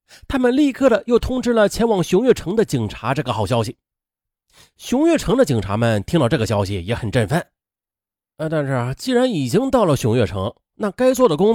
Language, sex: Chinese, male